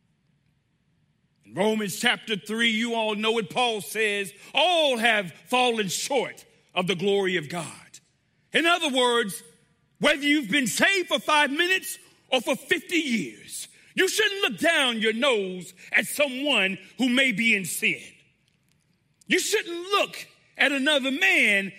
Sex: male